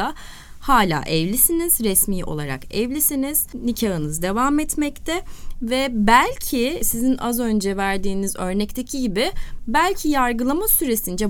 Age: 30-49